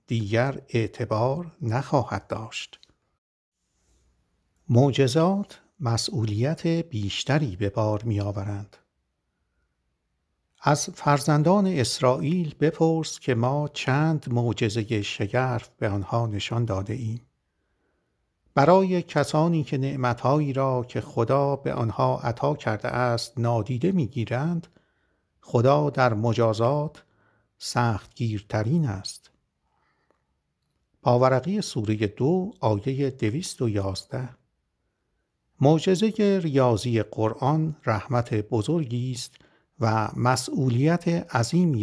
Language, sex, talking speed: Persian, male, 80 wpm